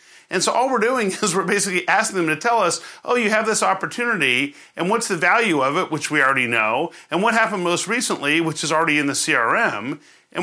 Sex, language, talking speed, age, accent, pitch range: male, English, 230 wpm, 40-59, American, 155-220 Hz